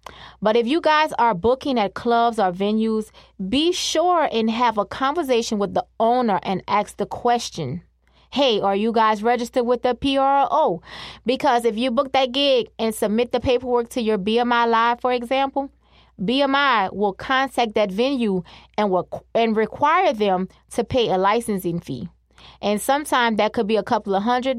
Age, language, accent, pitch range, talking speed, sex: 20-39, English, American, 210-255 Hz, 175 wpm, female